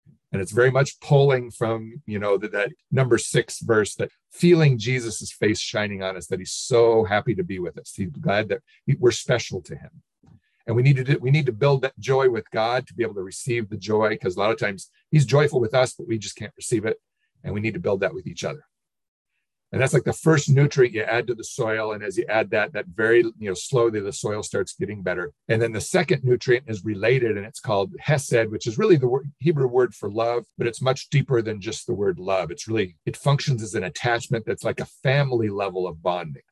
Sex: male